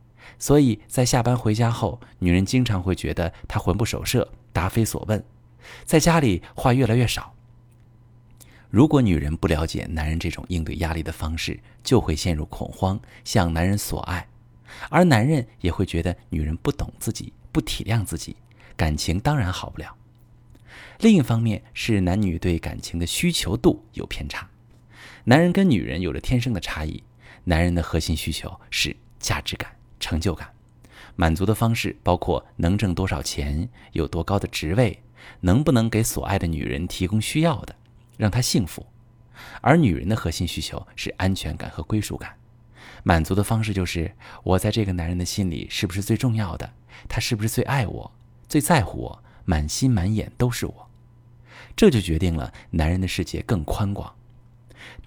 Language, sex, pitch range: Chinese, male, 90-120 Hz